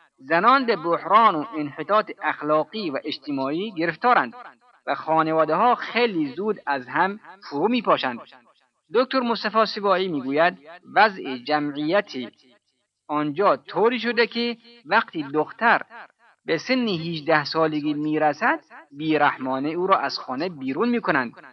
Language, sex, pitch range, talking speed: Persian, male, 145-230 Hz, 115 wpm